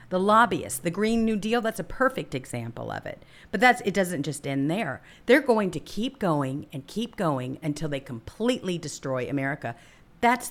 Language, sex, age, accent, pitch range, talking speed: English, female, 50-69, American, 140-215 Hz, 190 wpm